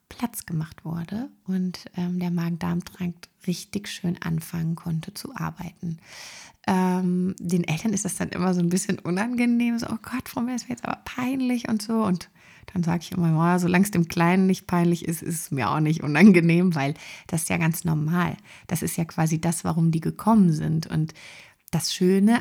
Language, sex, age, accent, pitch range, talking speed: German, female, 30-49, German, 170-200 Hz, 200 wpm